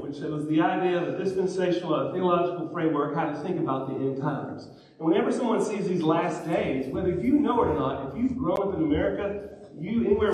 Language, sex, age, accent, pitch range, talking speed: English, male, 40-59, American, 140-175 Hz, 220 wpm